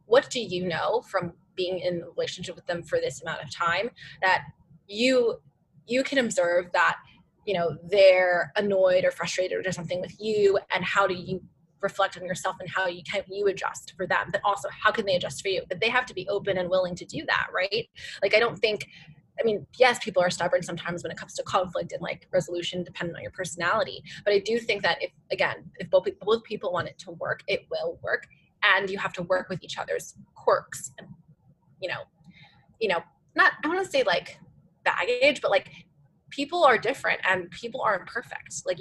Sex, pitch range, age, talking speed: female, 175-215 Hz, 20-39, 215 wpm